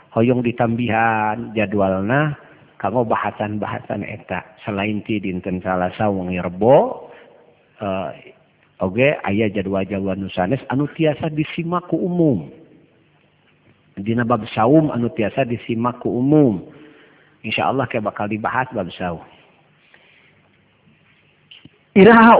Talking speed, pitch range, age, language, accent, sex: 95 wpm, 100-125 Hz, 50-69, Indonesian, native, male